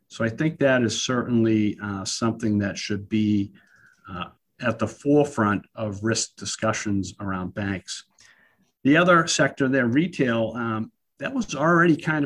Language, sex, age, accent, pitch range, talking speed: English, male, 50-69, American, 105-130 Hz, 145 wpm